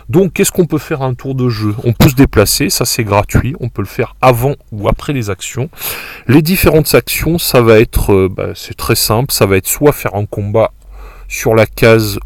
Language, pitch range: French, 100-135 Hz